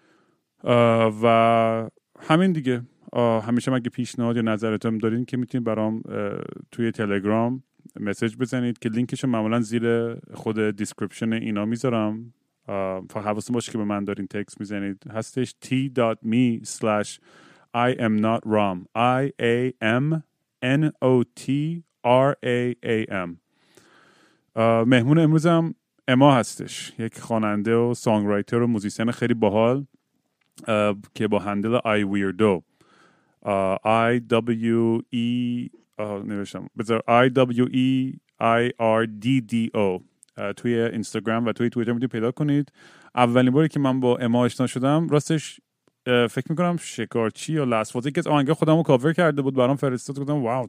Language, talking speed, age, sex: Persian, 115 wpm, 30-49, male